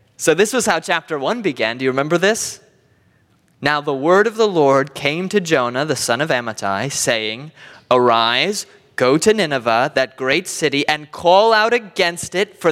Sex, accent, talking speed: male, American, 180 wpm